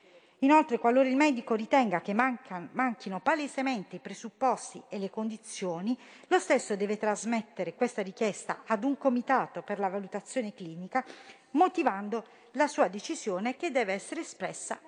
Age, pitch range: 50-69, 195-275 Hz